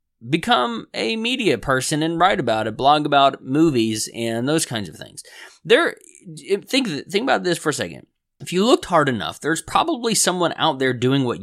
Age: 20-39